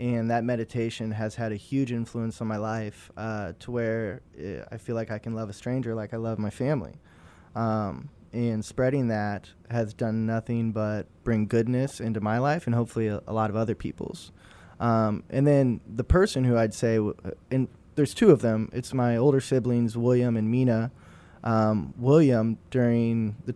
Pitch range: 110-125 Hz